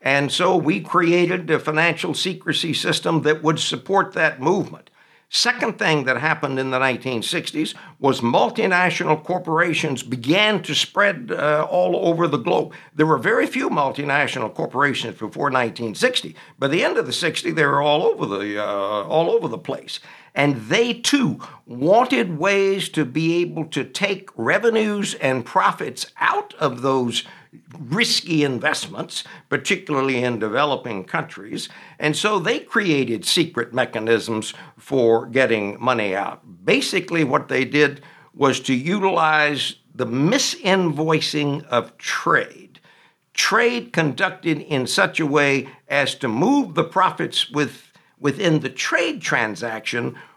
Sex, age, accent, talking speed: male, 60-79, American, 135 wpm